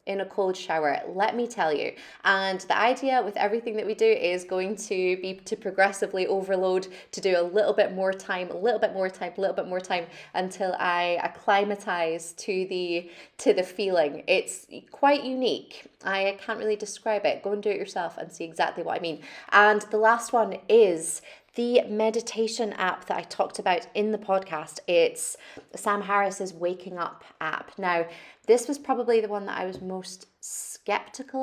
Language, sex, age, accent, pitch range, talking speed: English, female, 20-39, British, 180-225 Hz, 185 wpm